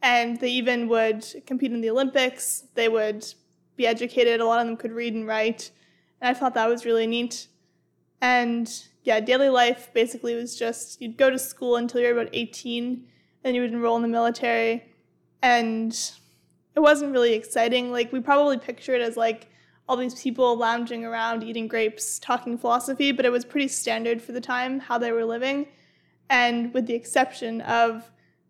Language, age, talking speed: English, 20-39, 185 wpm